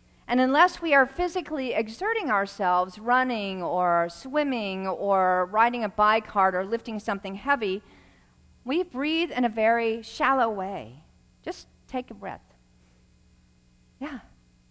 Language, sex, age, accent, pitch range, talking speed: English, female, 50-69, American, 190-265 Hz, 125 wpm